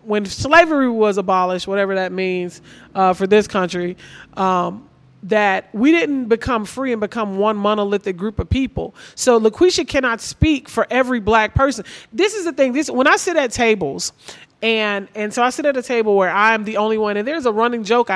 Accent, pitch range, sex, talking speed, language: American, 210-275 Hz, male, 200 wpm, English